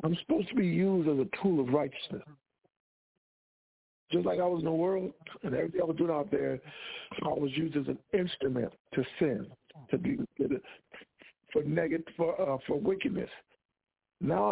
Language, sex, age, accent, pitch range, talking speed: English, male, 60-79, American, 160-230 Hz, 160 wpm